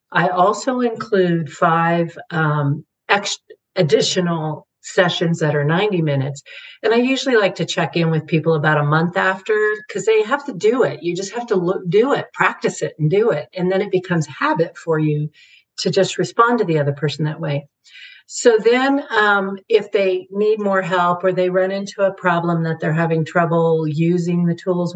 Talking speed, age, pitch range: 190 wpm, 50-69, 155-190 Hz